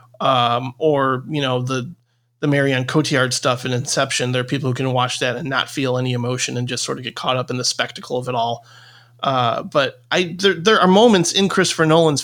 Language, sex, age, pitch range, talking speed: English, male, 30-49, 125-155 Hz, 225 wpm